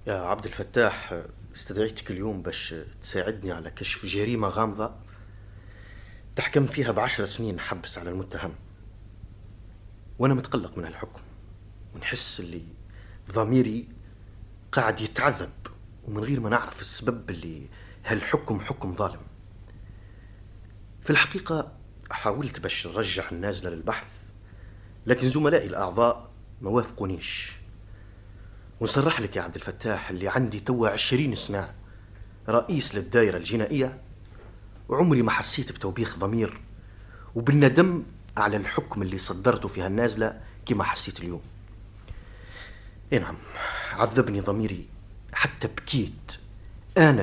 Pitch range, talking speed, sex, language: 100-115 Hz, 105 wpm, male, Arabic